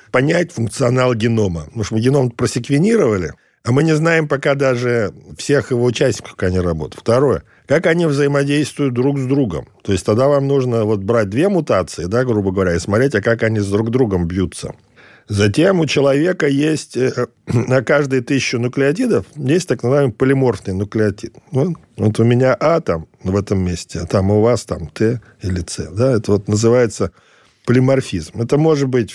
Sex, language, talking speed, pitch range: male, Russian, 175 wpm, 105-140 Hz